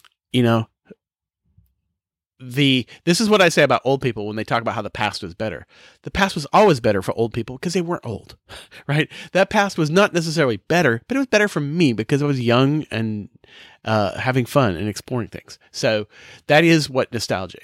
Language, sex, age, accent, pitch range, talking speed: English, male, 30-49, American, 105-150 Hz, 210 wpm